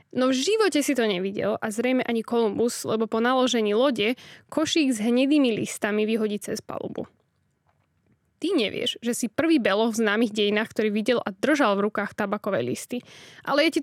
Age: 10-29